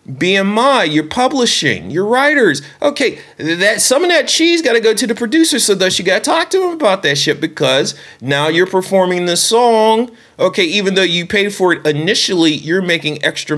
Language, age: English, 30-49